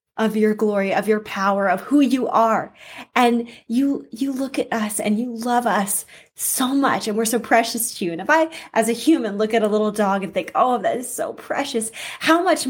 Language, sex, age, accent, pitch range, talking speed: English, female, 10-29, American, 210-255 Hz, 225 wpm